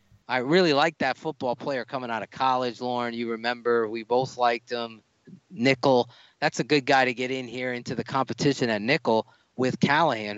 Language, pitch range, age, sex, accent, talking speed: English, 115-150 Hz, 30-49, male, American, 190 wpm